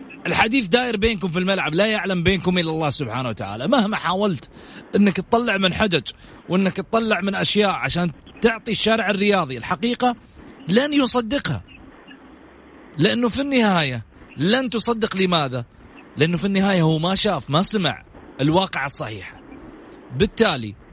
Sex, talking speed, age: male, 130 wpm, 30-49